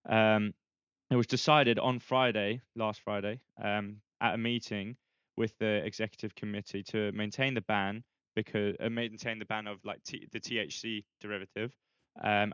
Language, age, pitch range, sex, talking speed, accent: English, 10-29, 105-115 Hz, male, 150 wpm, British